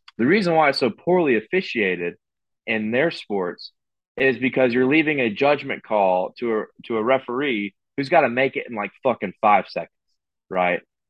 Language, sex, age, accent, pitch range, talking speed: English, male, 20-39, American, 115-155 Hz, 180 wpm